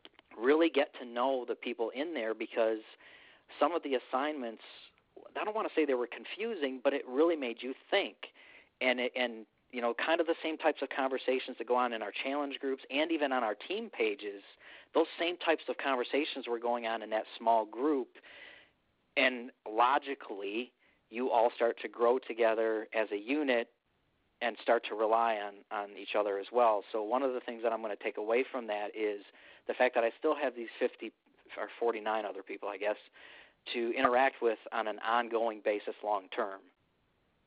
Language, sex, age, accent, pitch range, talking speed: English, male, 40-59, American, 115-140 Hz, 195 wpm